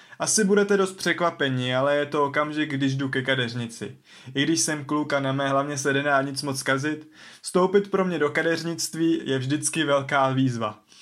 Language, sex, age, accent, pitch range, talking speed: Czech, male, 20-39, native, 135-160 Hz, 180 wpm